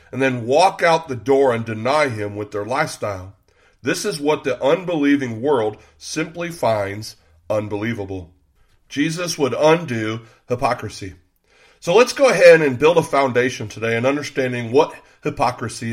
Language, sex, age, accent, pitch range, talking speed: English, male, 40-59, American, 110-150 Hz, 145 wpm